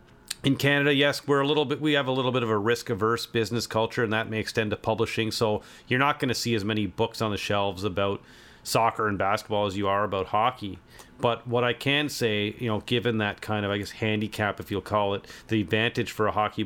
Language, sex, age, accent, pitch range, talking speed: English, male, 40-59, American, 100-120 Hz, 225 wpm